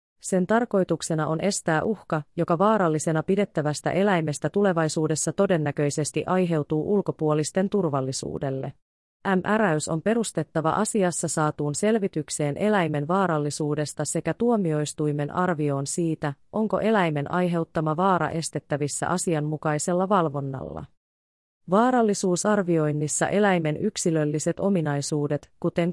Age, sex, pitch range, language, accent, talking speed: 30-49, female, 150-180 Hz, Finnish, native, 90 wpm